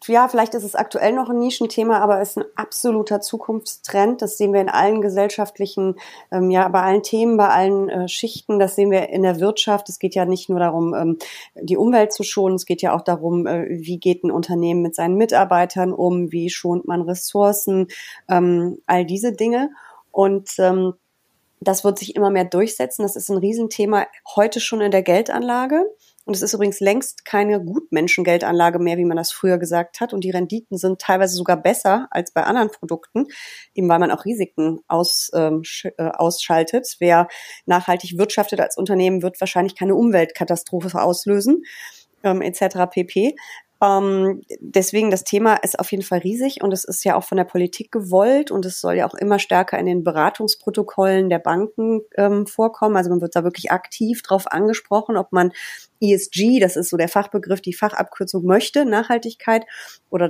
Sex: female